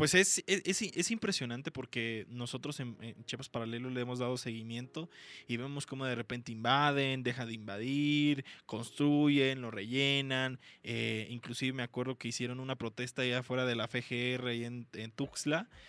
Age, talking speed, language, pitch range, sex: 20-39, 160 wpm, Spanish, 115-140 Hz, male